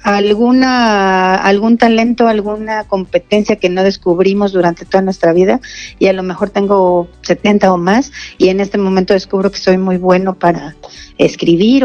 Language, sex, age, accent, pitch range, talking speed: Spanish, female, 40-59, Mexican, 195-235 Hz, 155 wpm